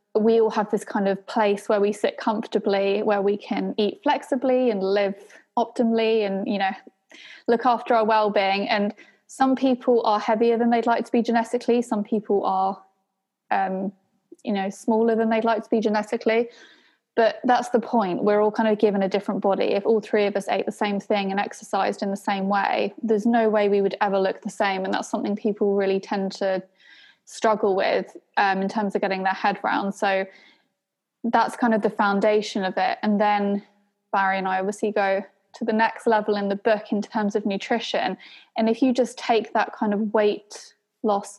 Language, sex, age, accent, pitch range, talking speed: English, female, 20-39, British, 200-225 Hz, 200 wpm